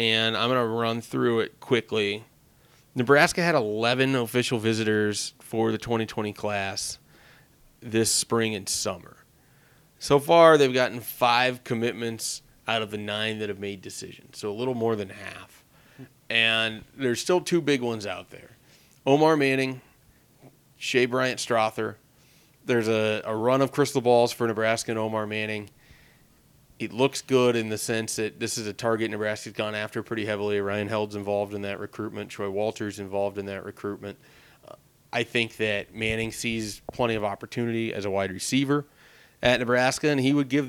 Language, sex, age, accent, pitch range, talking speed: English, male, 30-49, American, 105-125 Hz, 165 wpm